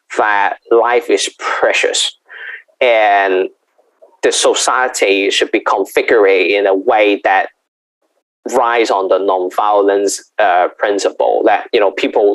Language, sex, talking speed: Hindi, male, 115 wpm